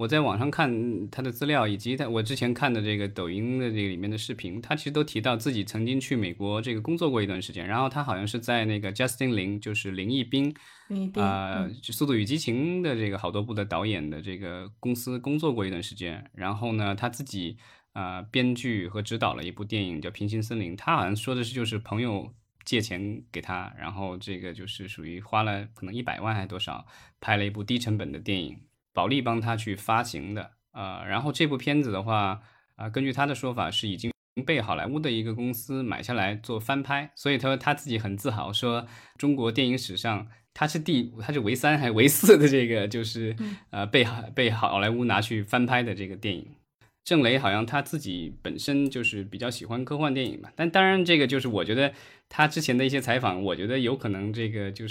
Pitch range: 100-130 Hz